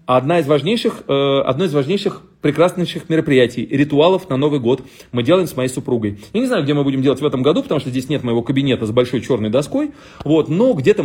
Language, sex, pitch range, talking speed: Russian, male, 125-170 Hz, 205 wpm